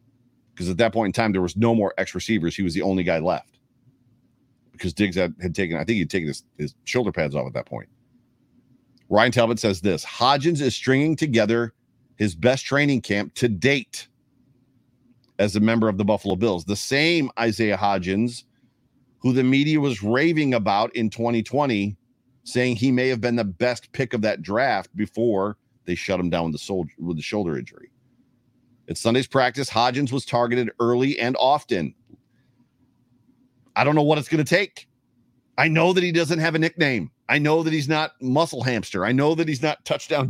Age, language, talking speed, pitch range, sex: 40-59, English, 190 wpm, 110-130 Hz, male